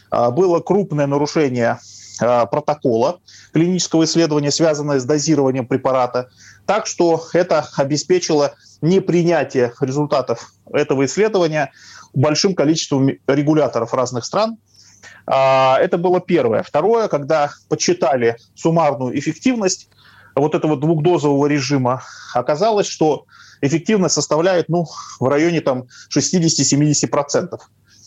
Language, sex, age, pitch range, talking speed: Russian, male, 30-49, 130-165 Hz, 90 wpm